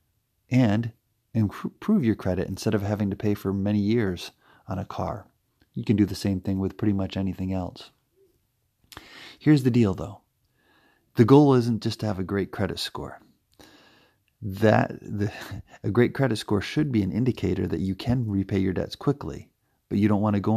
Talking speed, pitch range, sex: 185 wpm, 95-110 Hz, male